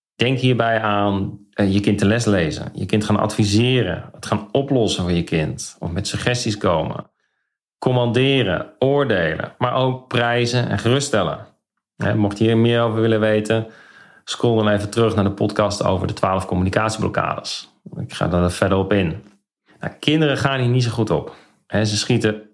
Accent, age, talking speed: Dutch, 40-59, 165 wpm